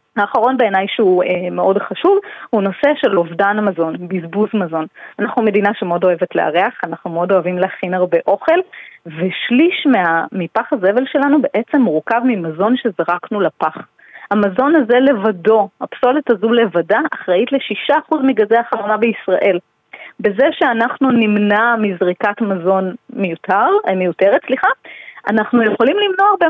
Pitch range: 195-270 Hz